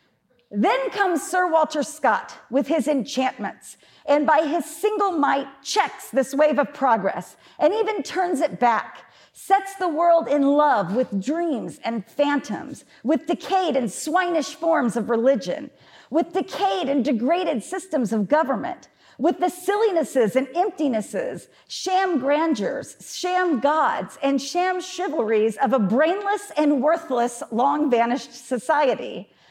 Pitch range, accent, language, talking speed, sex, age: 260-355 Hz, American, English, 130 wpm, female, 40-59